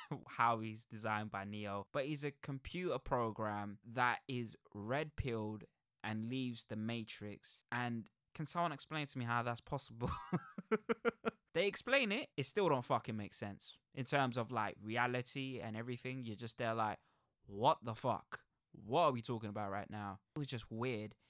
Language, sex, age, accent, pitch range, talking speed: English, male, 20-39, British, 110-135 Hz, 170 wpm